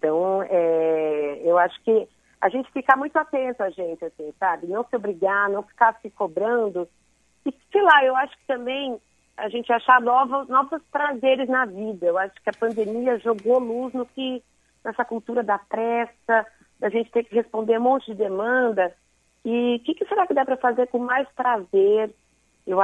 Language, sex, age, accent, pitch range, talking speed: Portuguese, female, 40-59, Brazilian, 195-245 Hz, 190 wpm